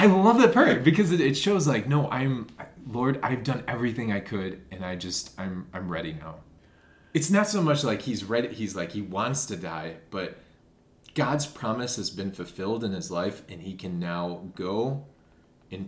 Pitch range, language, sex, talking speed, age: 85-110 Hz, English, male, 195 wpm, 20-39